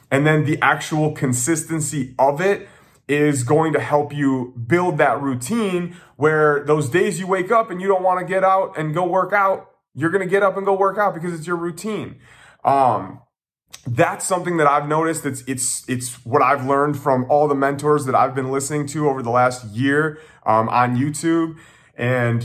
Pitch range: 130-180 Hz